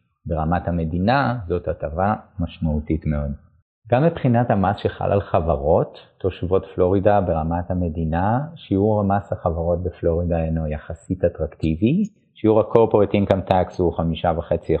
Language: Hebrew